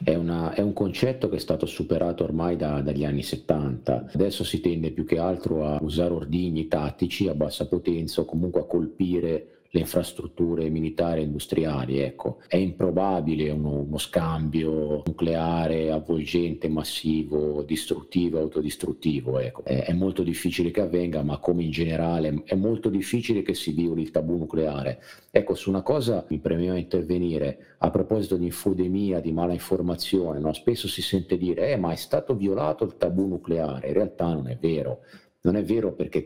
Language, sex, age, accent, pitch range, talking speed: Italian, male, 50-69, native, 75-90 Hz, 165 wpm